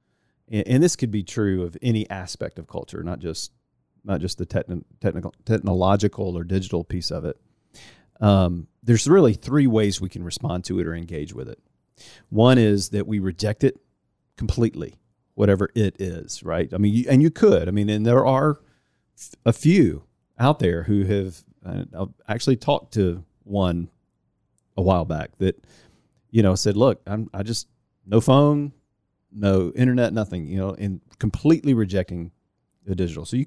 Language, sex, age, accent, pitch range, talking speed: English, male, 40-59, American, 90-115 Hz, 175 wpm